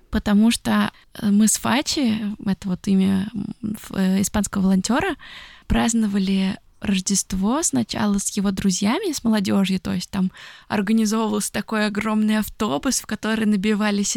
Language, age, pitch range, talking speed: Russian, 20-39, 205-240 Hz, 120 wpm